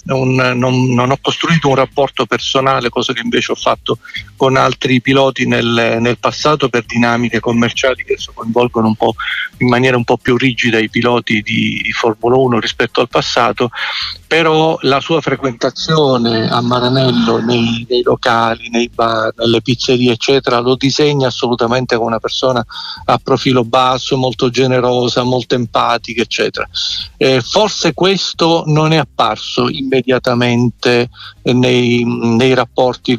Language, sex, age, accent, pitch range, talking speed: Italian, male, 50-69, native, 120-135 Hz, 145 wpm